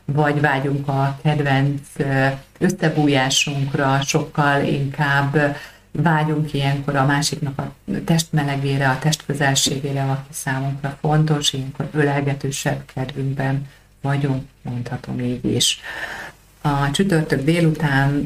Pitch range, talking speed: 130-145 Hz, 90 wpm